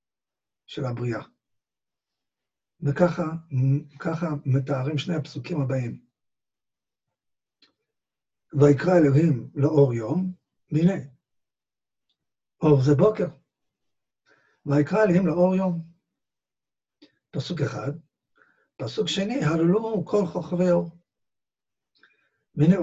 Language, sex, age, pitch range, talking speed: Hebrew, male, 60-79, 140-180 Hz, 75 wpm